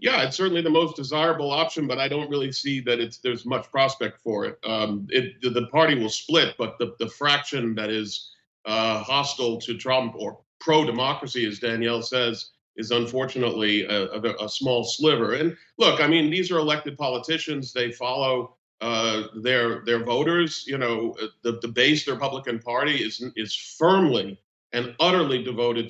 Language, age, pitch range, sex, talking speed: English, 50-69, 115-150 Hz, male, 175 wpm